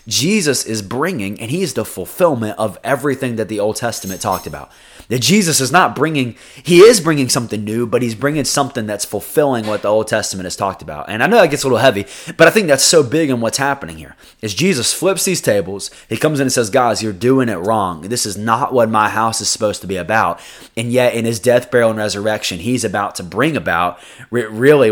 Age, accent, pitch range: 20-39, American, 105-130 Hz